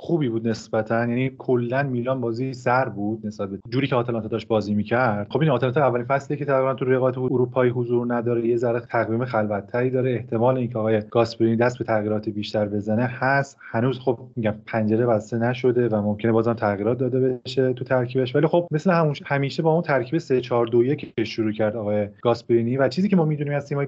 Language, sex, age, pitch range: Persian, male, 30-49, 115-145 Hz